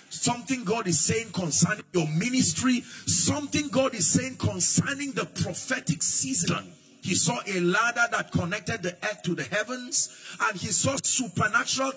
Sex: male